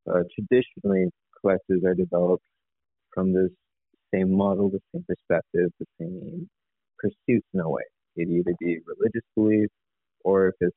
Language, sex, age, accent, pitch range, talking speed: English, male, 30-49, American, 90-110 Hz, 145 wpm